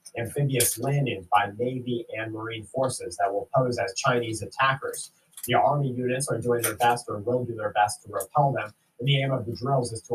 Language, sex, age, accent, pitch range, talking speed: English, male, 30-49, American, 115-135 Hz, 215 wpm